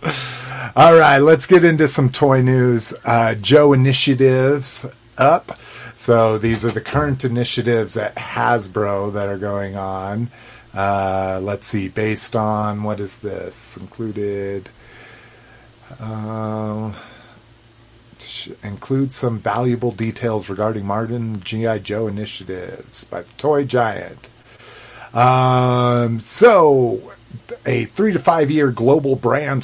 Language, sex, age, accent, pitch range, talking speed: English, male, 30-49, American, 110-125 Hz, 115 wpm